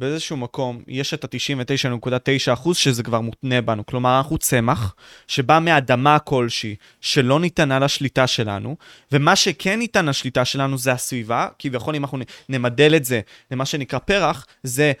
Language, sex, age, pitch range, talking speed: Hebrew, male, 20-39, 125-155 Hz, 145 wpm